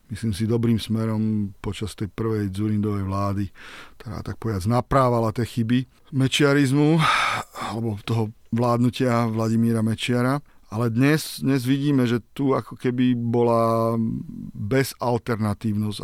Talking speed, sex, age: 115 wpm, male, 40-59